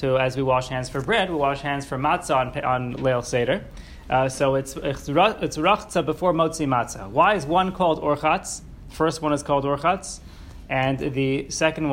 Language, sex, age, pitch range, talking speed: English, male, 30-49, 130-160 Hz, 195 wpm